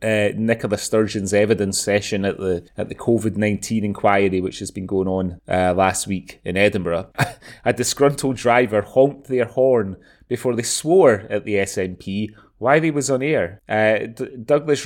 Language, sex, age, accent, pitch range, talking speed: English, male, 30-49, British, 100-140 Hz, 170 wpm